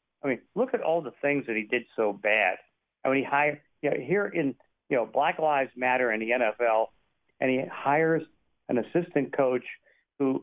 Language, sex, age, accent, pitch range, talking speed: English, male, 50-69, American, 125-160 Hz, 190 wpm